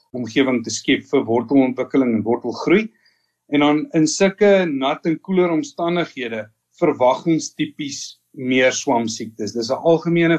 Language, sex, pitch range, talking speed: English, male, 130-165 Hz, 120 wpm